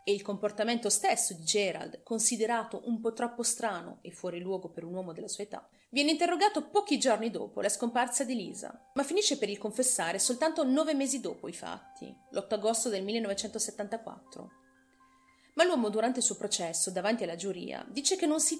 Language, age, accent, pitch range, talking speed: Italian, 30-49, native, 205-270 Hz, 185 wpm